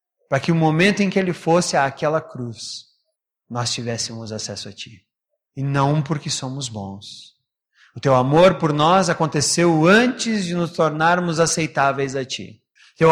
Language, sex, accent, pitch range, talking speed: Portuguese, male, Brazilian, 120-160 Hz, 155 wpm